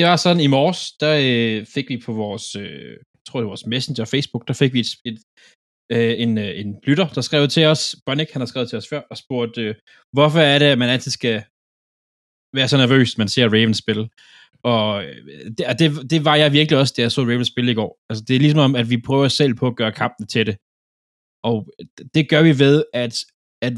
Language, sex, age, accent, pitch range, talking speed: Danish, male, 20-39, native, 110-140 Hz, 225 wpm